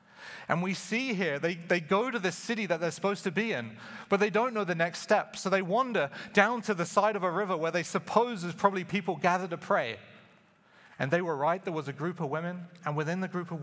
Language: English